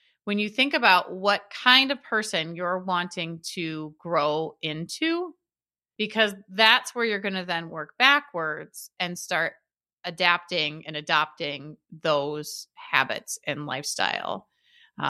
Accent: American